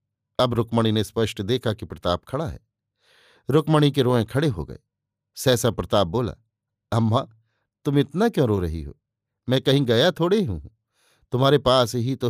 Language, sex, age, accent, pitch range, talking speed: Hindi, male, 50-69, native, 110-135 Hz, 165 wpm